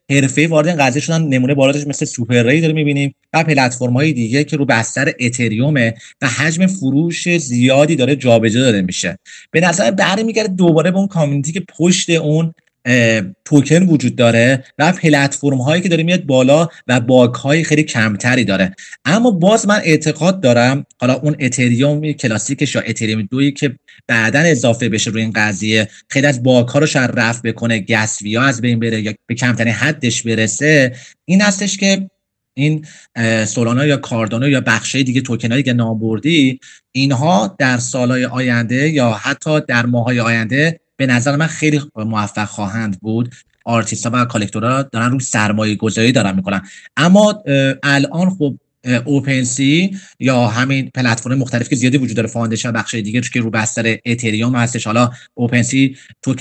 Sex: male